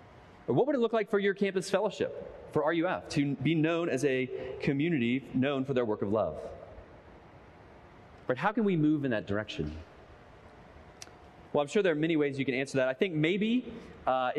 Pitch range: 130-190 Hz